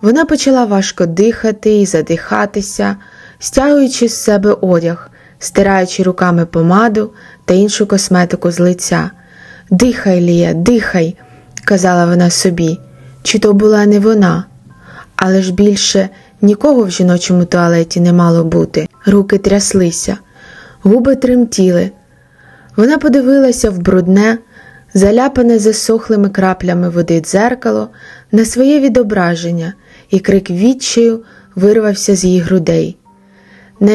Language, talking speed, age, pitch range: Ukrainian, 115 wpm, 20-39, 180-230 Hz